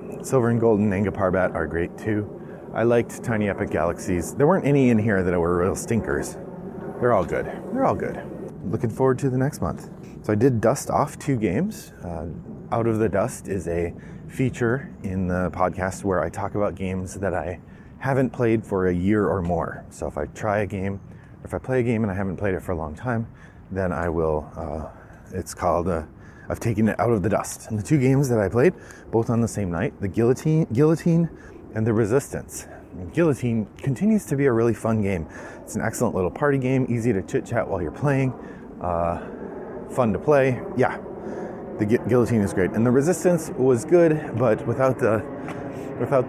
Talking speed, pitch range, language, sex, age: 205 wpm, 95-130 Hz, English, male, 30-49